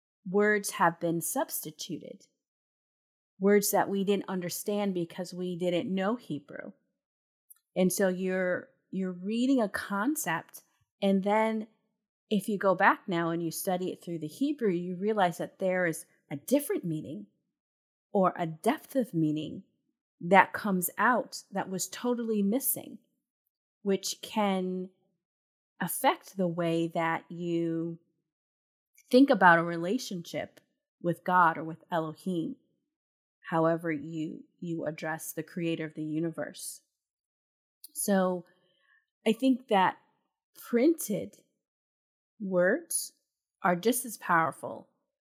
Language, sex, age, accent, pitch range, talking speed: English, female, 30-49, American, 165-205 Hz, 120 wpm